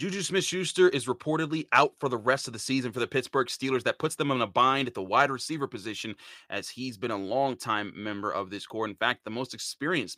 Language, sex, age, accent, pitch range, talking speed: English, male, 30-49, American, 110-140 Hz, 235 wpm